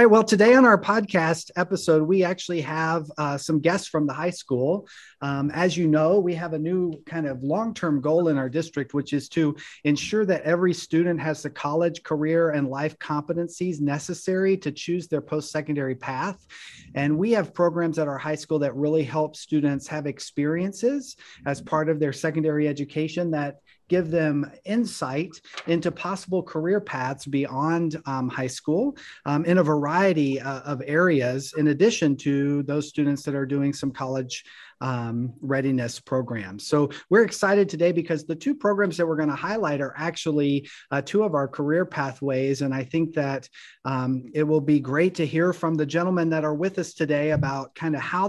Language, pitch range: English, 140-170 Hz